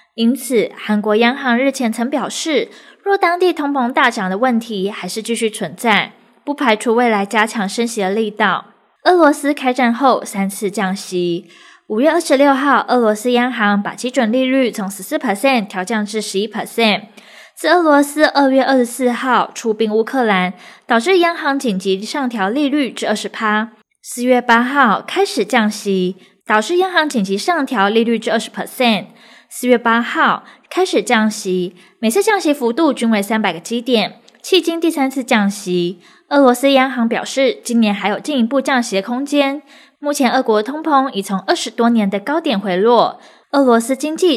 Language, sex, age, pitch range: Chinese, female, 20-39, 210-270 Hz